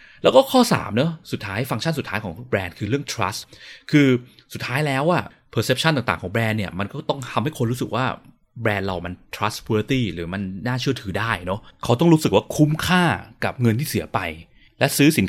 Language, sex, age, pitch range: Thai, male, 20-39, 105-145 Hz